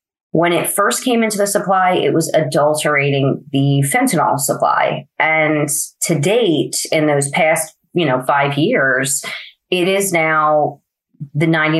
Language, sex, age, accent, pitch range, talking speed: English, female, 30-49, American, 140-165 Hz, 140 wpm